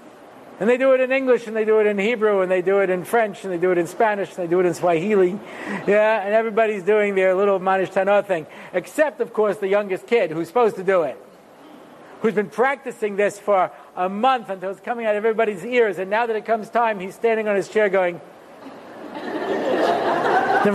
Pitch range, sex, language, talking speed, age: 200-260 Hz, male, English, 220 wpm, 60-79